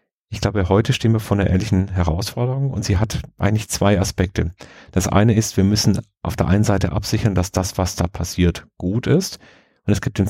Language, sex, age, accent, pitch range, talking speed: German, male, 40-59, German, 95-110 Hz, 210 wpm